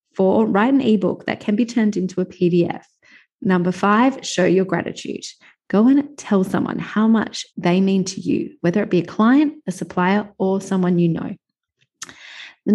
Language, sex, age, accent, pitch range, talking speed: English, female, 30-49, Australian, 180-230 Hz, 180 wpm